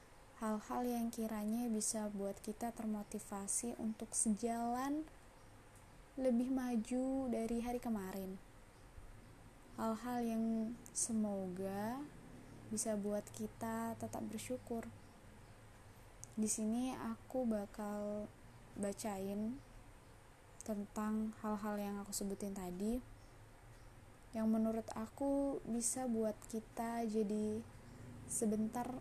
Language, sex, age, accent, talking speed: Indonesian, female, 20-39, native, 85 wpm